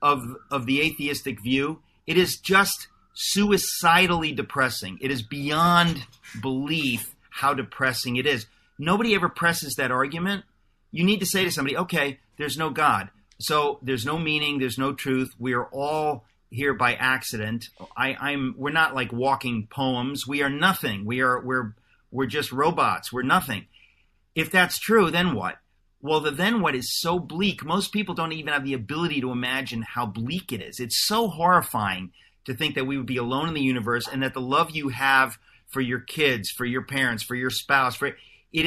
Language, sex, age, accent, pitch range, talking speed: English, male, 40-59, American, 125-160 Hz, 185 wpm